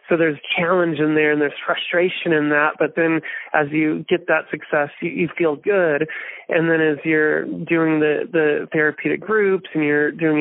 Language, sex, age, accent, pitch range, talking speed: English, male, 20-39, American, 150-160 Hz, 190 wpm